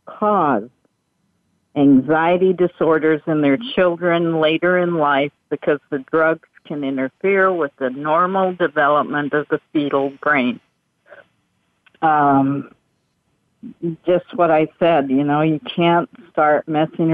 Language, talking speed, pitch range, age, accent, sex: English, 115 wpm, 150-180 Hz, 50-69, American, female